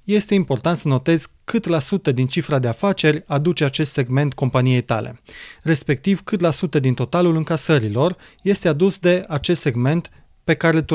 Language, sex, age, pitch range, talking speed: Romanian, male, 20-39, 135-165 Hz, 170 wpm